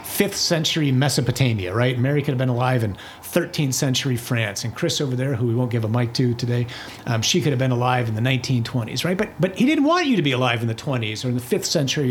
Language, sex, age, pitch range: English, male, 40-59, 130-185 Hz